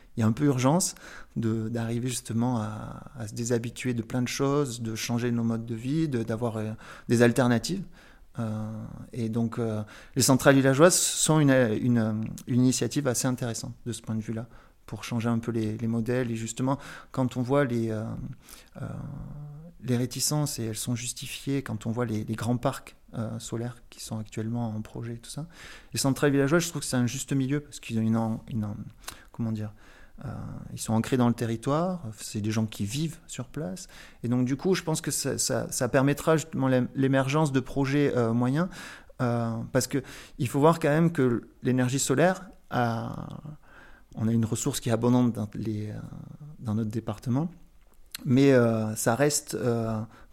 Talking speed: 185 wpm